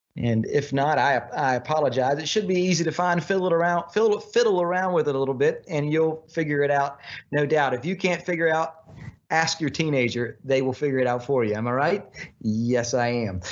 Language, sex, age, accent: English, male, 40-59, American